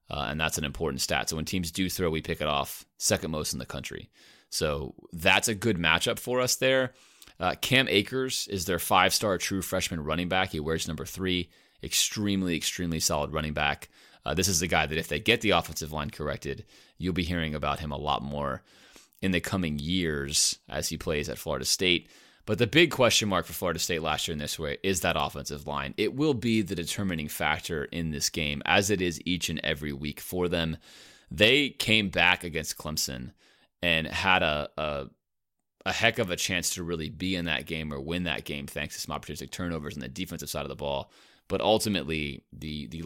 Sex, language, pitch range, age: male, English, 75-95 Hz, 30-49